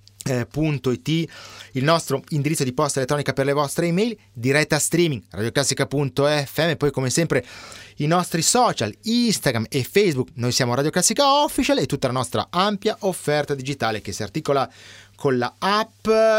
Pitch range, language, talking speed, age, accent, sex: 115-175 Hz, Italian, 150 wpm, 30-49, native, male